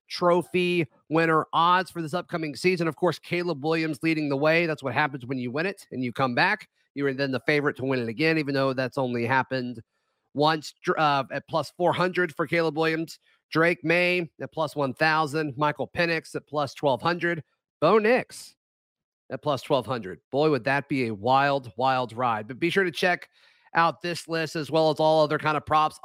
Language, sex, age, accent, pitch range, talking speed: English, male, 40-59, American, 145-180 Hz, 195 wpm